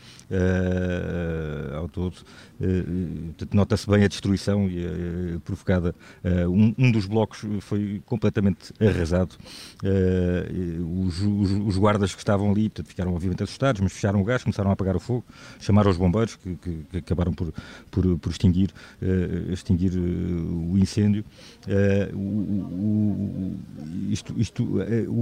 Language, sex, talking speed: Portuguese, male, 115 wpm